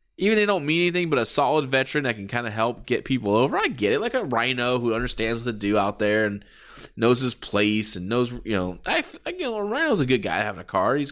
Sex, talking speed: male, 280 wpm